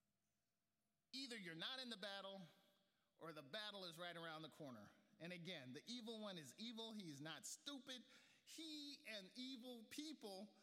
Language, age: English, 40-59